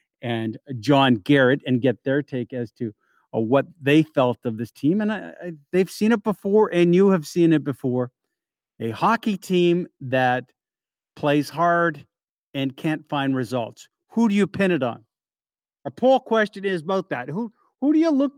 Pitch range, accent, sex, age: 145-205 Hz, American, male, 50-69